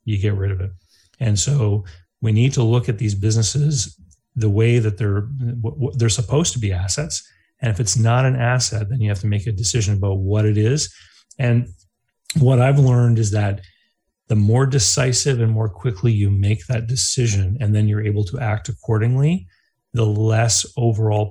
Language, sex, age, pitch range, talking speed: English, male, 30-49, 105-125 Hz, 185 wpm